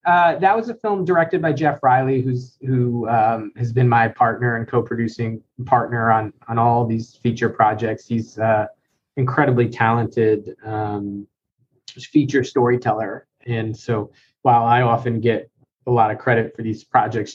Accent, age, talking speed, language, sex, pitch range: American, 20-39, 155 wpm, English, male, 115-130 Hz